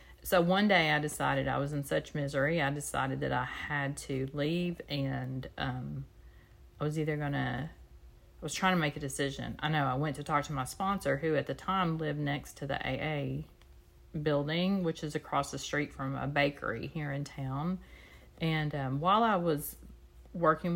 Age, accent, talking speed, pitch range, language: 40-59, American, 195 wpm, 135-155 Hz, English